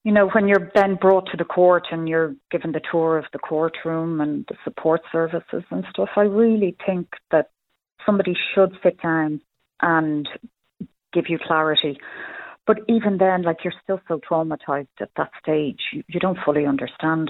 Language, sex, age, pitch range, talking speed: English, female, 40-59, 150-180 Hz, 175 wpm